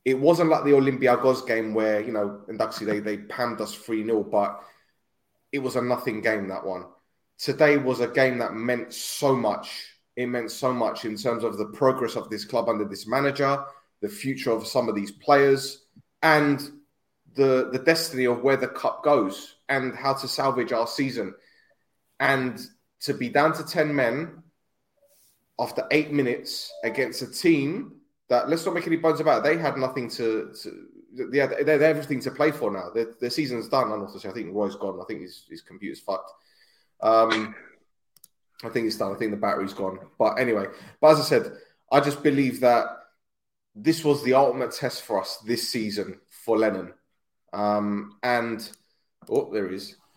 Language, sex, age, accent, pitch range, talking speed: English, male, 20-39, British, 110-140 Hz, 185 wpm